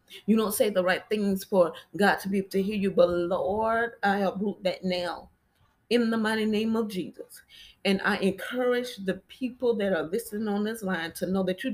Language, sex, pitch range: English, female, 185-220 Hz